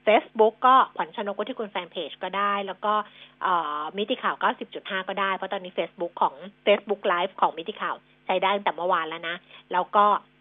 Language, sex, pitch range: Thai, female, 190-235 Hz